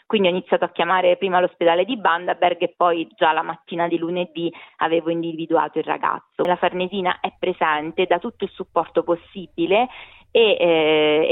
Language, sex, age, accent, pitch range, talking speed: Italian, female, 20-39, native, 165-185 Hz, 165 wpm